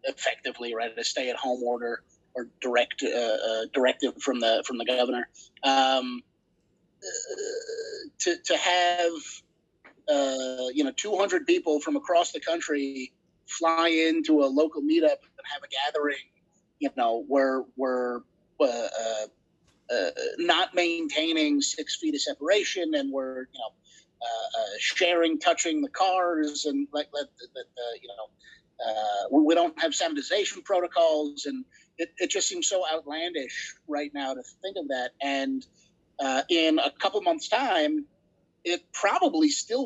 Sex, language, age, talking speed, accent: male, English, 30-49, 145 wpm, American